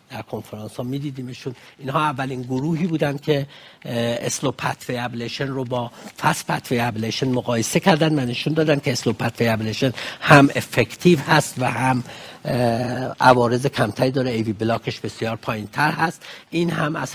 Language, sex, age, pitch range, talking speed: Persian, male, 60-79, 120-150 Hz, 145 wpm